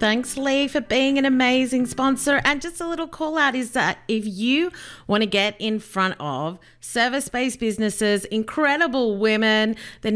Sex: female